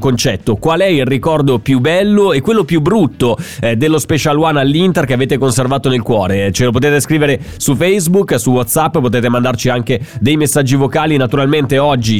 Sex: male